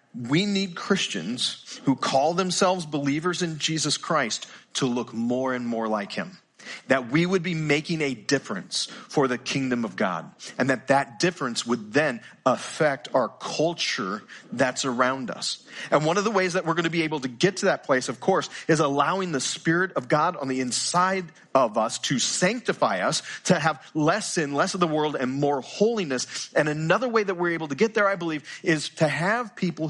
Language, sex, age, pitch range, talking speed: English, male, 40-59, 135-180 Hz, 200 wpm